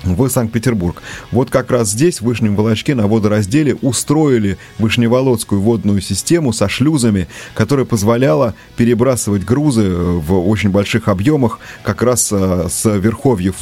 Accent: native